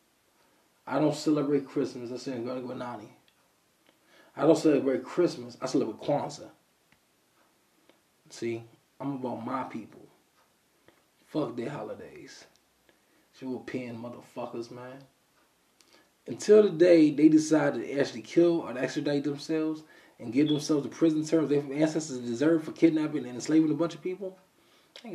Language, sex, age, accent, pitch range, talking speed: English, male, 20-39, American, 125-160 Hz, 145 wpm